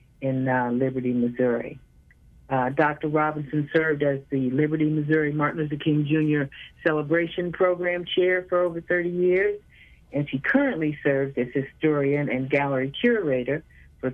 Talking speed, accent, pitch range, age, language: 140 wpm, American, 135-155 Hz, 50-69, English